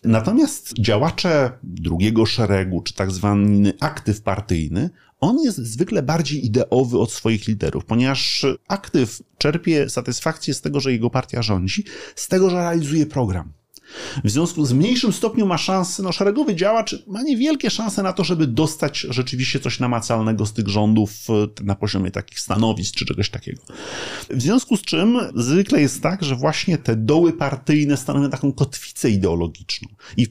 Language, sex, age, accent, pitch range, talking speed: Polish, male, 30-49, native, 105-145 Hz, 160 wpm